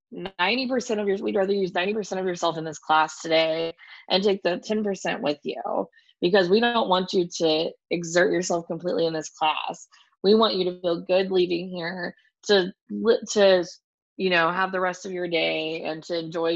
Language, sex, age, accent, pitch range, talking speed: English, female, 20-39, American, 175-210 Hz, 185 wpm